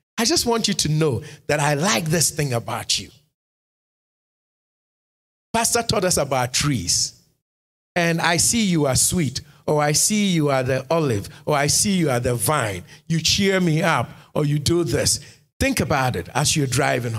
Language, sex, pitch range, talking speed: English, male, 125-170 Hz, 180 wpm